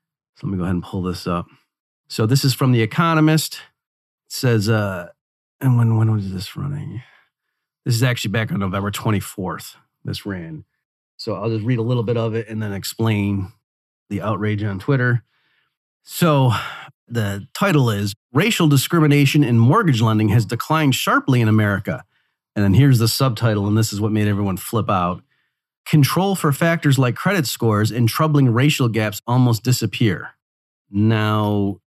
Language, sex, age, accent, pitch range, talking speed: English, male, 30-49, American, 100-135 Hz, 165 wpm